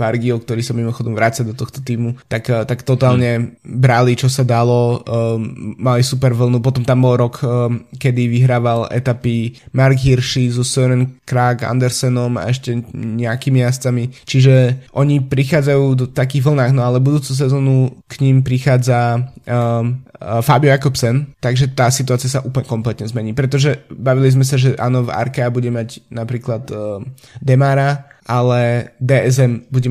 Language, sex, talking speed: Slovak, male, 155 wpm